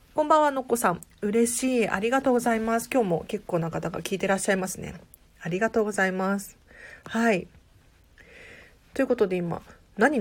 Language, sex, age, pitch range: Japanese, female, 40-59, 170-265 Hz